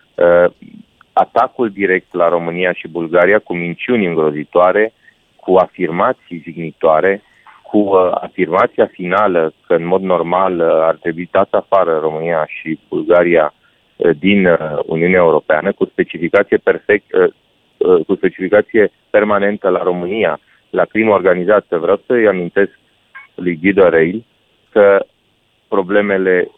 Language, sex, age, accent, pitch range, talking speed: Romanian, male, 30-49, native, 85-105 Hz, 120 wpm